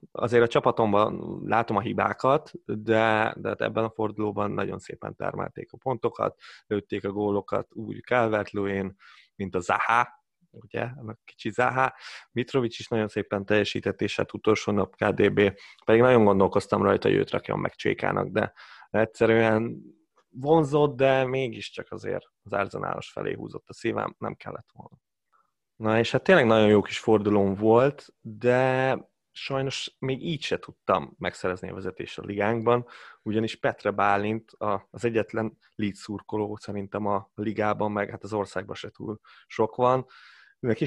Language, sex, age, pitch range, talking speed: Hungarian, male, 30-49, 105-120 Hz, 150 wpm